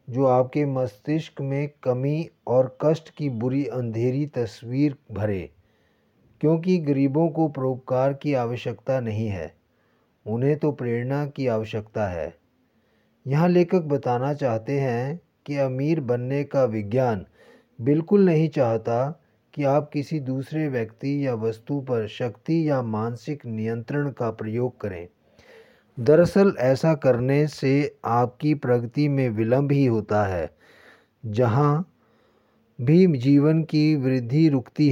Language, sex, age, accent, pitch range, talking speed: Hindi, male, 30-49, native, 120-145 Hz, 120 wpm